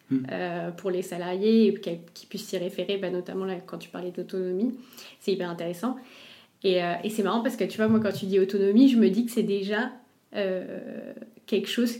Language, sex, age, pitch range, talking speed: French, female, 20-39, 185-220 Hz, 175 wpm